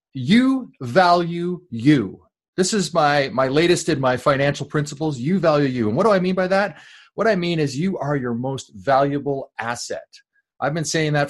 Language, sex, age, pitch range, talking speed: English, male, 30-49, 115-160 Hz, 190 wpm